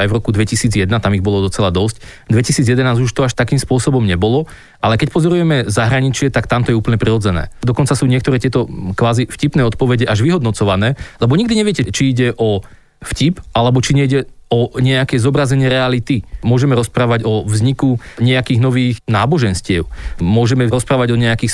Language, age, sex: Slovak, 30-49, male